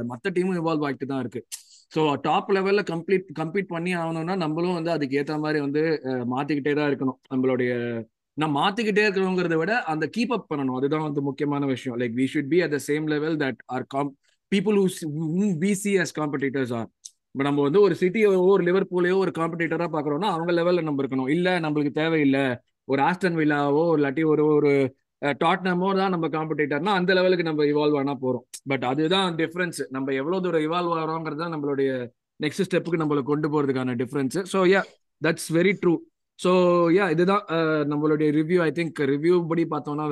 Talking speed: 105 wpm